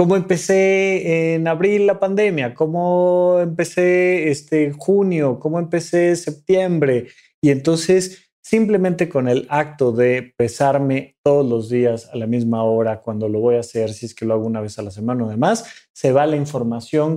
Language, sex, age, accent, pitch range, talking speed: Spanish, male, 30-49, Mexican, 125-175 Hz, 170 wpm